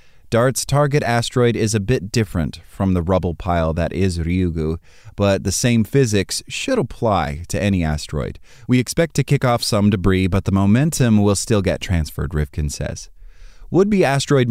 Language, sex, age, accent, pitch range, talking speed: English, male, 30-49, American, 85-120 Hz, 170 wpm